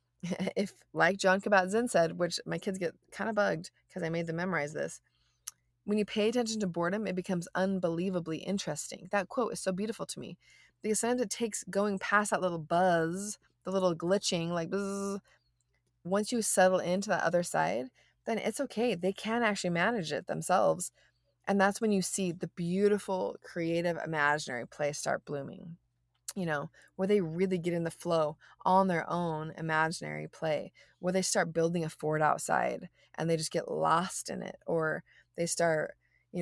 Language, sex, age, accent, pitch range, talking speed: English, female, 20-39, American, 160-190 Hz, 180 wpm